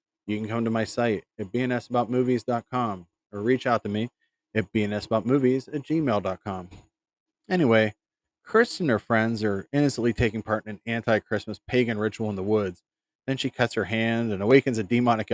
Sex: male